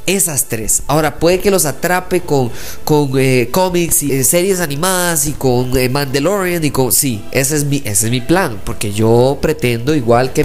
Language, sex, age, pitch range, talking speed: Spanish, male, 20-39, 130-165 Hz, 195 wpm